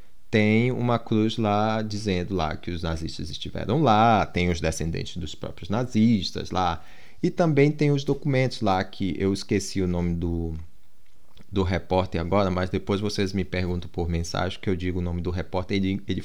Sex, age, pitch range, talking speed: male, 20-39, 90-105 Hz, 175 wpm